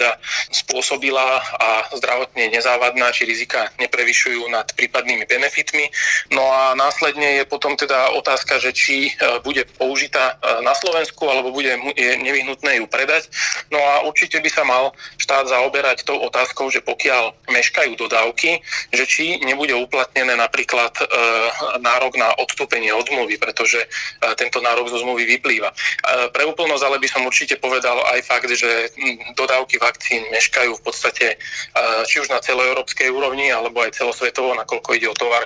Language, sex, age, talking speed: Slovak, male, 30-49, 140 wpm